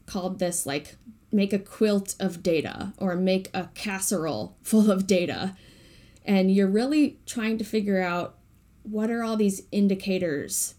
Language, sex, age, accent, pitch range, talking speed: English, female, 10-29, American, 180-210 Hz, 150 wpm